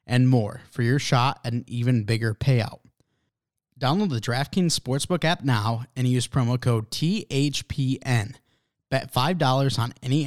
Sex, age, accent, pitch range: male, 20-39, American, 115-135 Hz